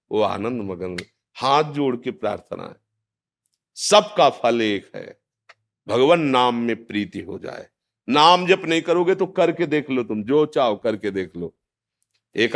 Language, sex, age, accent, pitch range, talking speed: Hindi, male, 50-69, native, 110-155 Hz, 160 wpm